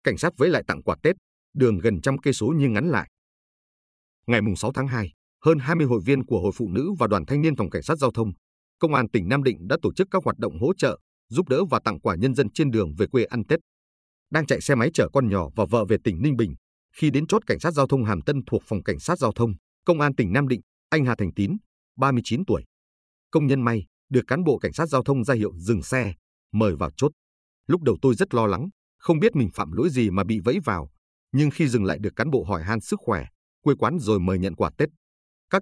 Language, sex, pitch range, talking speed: Vietnamese, male, 90-140 Hz, 260 wpm